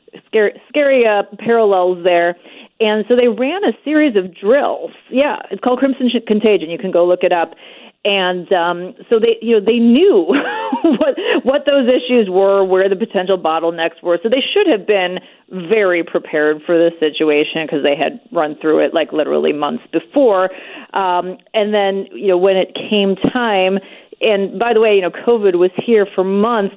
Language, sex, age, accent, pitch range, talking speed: English, female, 40-59, American, 170-220 Hz, 185 wpm